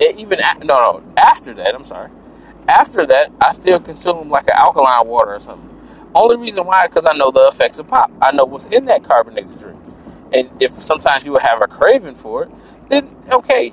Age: 20-39